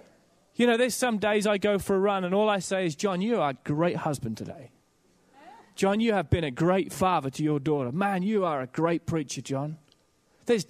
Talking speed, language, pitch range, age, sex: 225 wpm, English, 185-235 Hz, 30-49, male